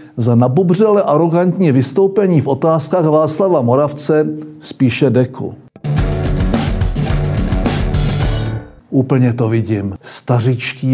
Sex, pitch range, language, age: male, 135-195 Hz, Czech, 60-79